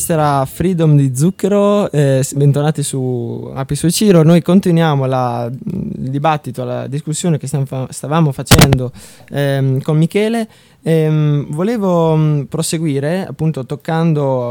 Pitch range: 130-155 Hz